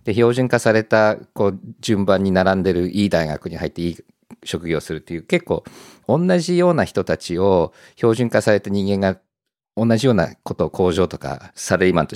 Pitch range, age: 90-140 Hz, 50-69